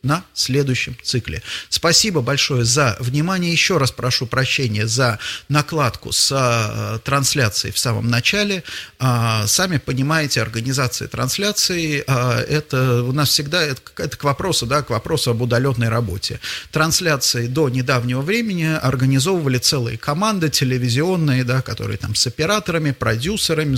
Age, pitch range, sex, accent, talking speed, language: 30-49, 120-150 Hz, male, native, 130 wpm, Russian